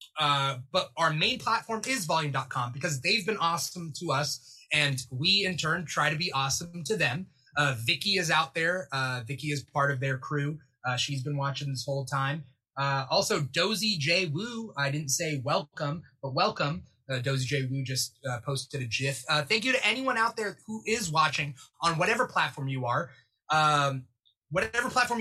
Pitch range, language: 135-175 Hz, English